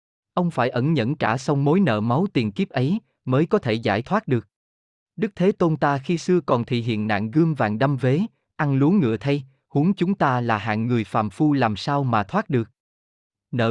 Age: 20-39